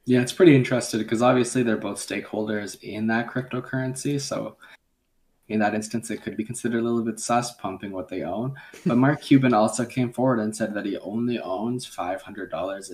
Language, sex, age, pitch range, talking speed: English, male, 20-39, 105-125 Hz, 190 wpm